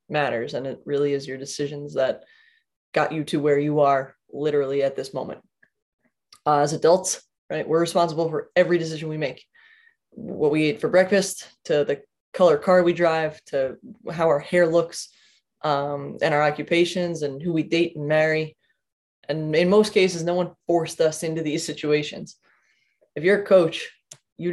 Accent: American